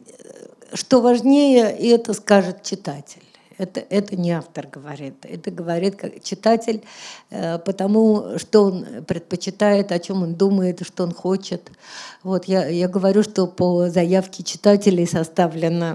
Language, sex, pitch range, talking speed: Russian, female, 170-205 Hz, 135 wpm